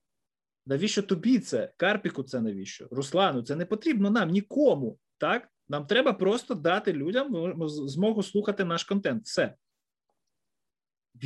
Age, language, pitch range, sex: 20-39, Ukrainian, 145-205 Hz, male